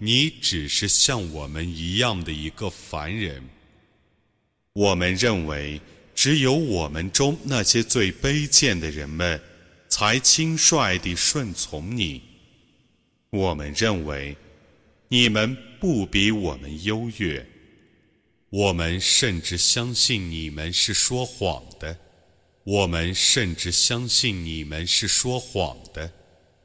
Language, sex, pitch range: Arabic, male, 85-120 Hz